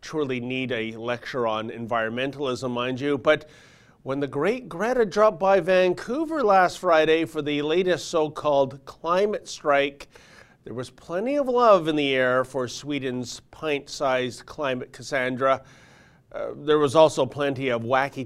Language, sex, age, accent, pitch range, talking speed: English, male, 40-59, American, 130-200 Hz, 145 wpm